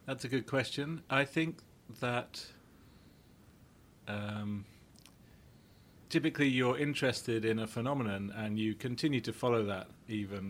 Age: 40-59